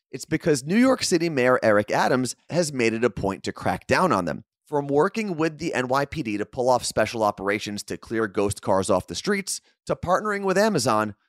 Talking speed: 205 wpm